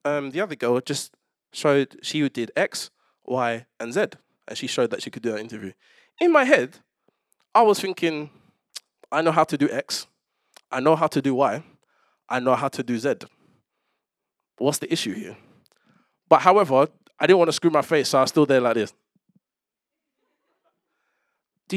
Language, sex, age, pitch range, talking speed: English, male, 20-39, 130-200 Hz, 180 wpm